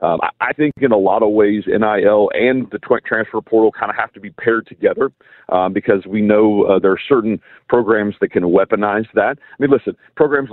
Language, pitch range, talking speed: English, 105-125 Hz, 210 wpm